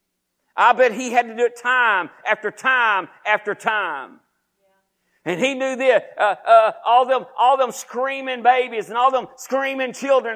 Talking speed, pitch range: 170 wpm, 235-275 Hz